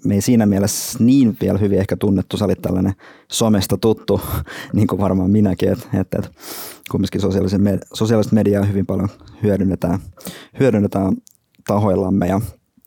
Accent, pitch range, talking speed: native, 95-105 Hz, 150 wpm